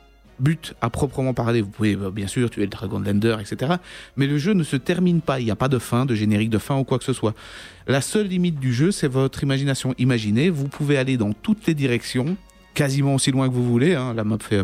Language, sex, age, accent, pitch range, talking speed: French, male, 30-49, French, 110-145 Hz, 255 wpm